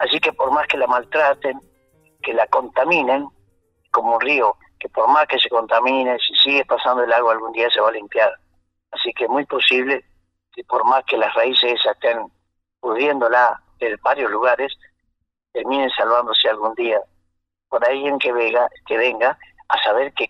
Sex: male